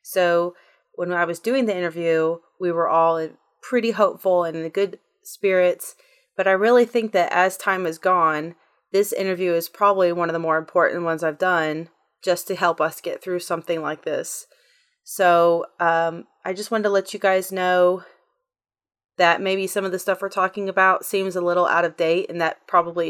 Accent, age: American, 30-49